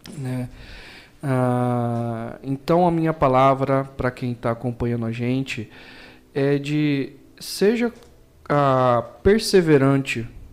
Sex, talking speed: male, 95 wpm